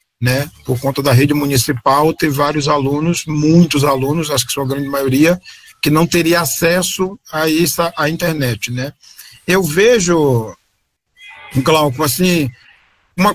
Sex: male